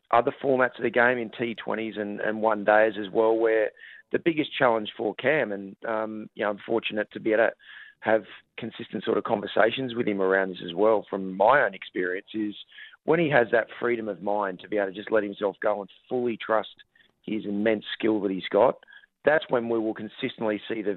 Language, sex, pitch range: English, male, 105-120 Hz